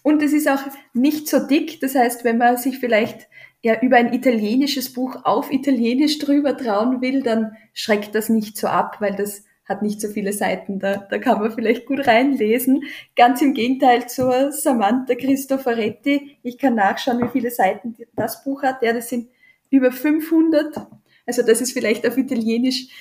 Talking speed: 180 wpm